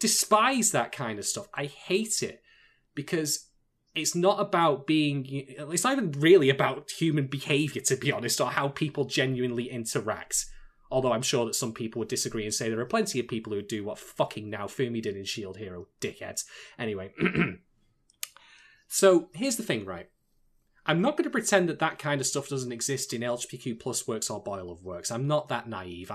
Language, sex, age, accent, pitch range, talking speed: English, male, 20-39, British, 120-160 Hz, 195 wpm